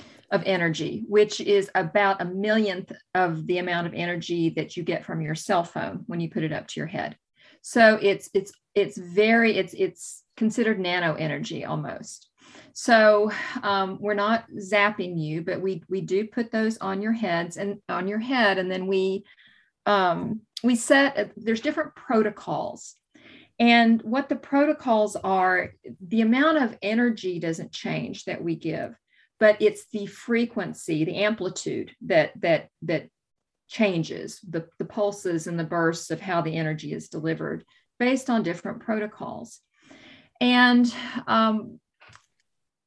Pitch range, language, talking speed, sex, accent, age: 185-225 Hz, English, 155 wpm, female, American, 40-59